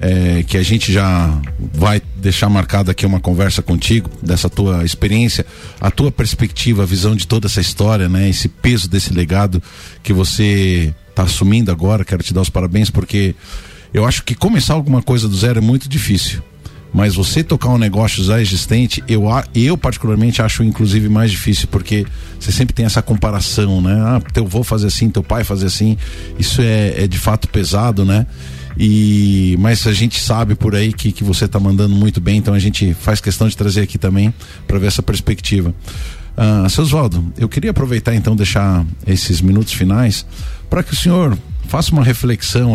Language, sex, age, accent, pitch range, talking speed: Portuguese, male, 50-69, Brazilian, 90-110 Hz, 185 wpm